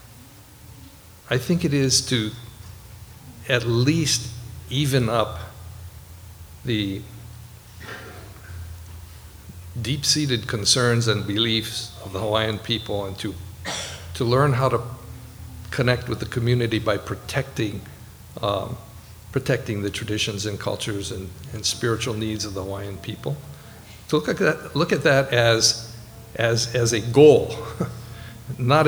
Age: 60-79